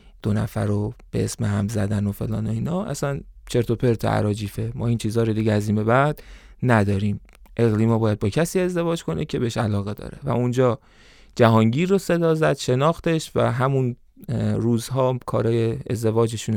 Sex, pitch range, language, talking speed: male, 110-135 Hz, Persian, 175 wpm